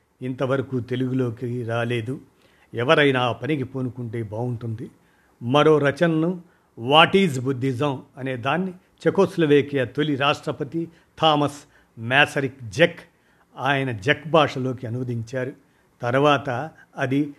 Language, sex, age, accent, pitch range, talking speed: Telugu, male, 50-69, native, 125-150 Hz, 95 wpm